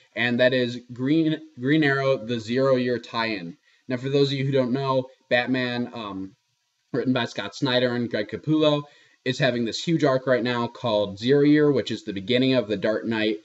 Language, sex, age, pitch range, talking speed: English, male, 20-39, 110-130 Hz, 200 wpm